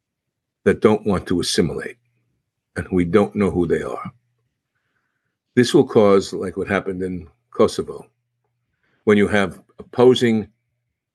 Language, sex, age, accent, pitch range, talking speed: English, male, 60-79, American, 105-125 Hz, 130 wpm